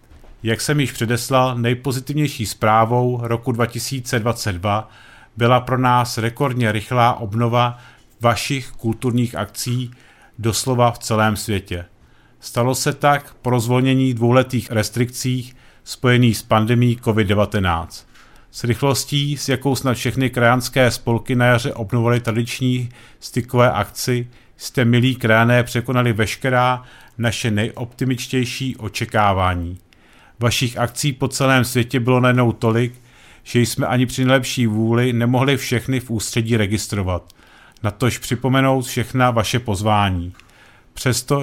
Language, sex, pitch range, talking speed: Czech, male, 115-125 Hz, 115 wpm